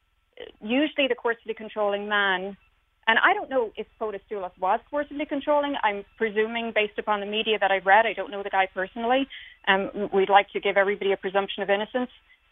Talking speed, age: 190 wpm, 40-59